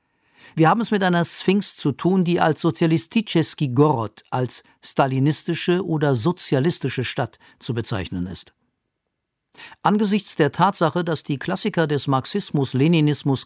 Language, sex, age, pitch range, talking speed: German, male, 50-69, 130-165 Hz, 125 wpm